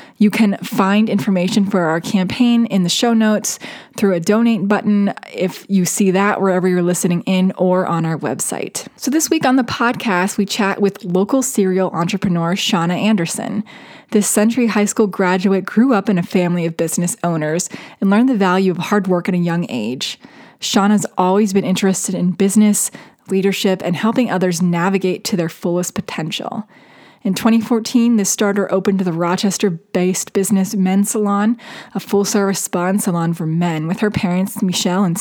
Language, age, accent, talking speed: English, 20-39, American, 175 wpm